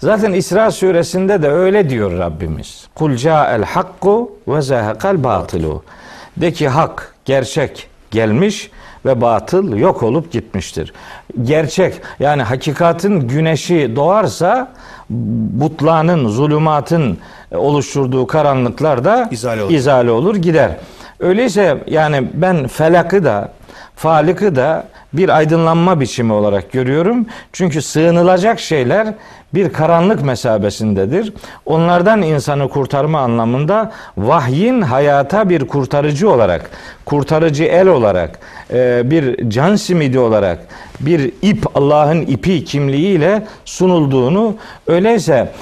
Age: 50-69